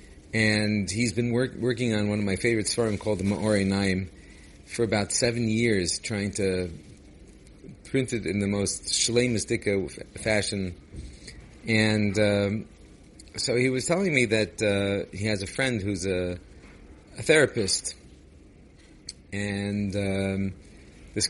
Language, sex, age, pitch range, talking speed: English, male, 40-59, 90-115 Hz, 135 wpm